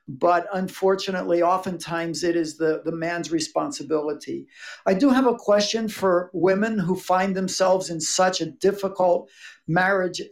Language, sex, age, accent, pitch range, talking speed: English, male, 60-79, American, 175-220 Hz, 140 wpm